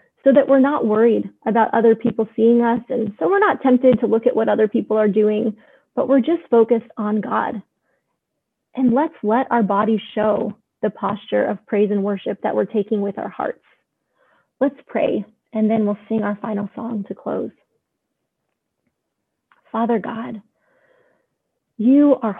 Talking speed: 165 wpm